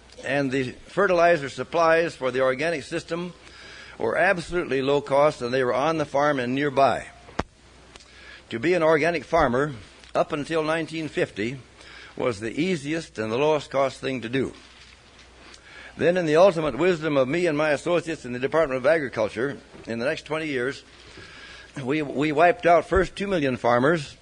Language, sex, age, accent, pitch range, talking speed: English, male, 60-79, American, 130-165 Hz, 165 wpm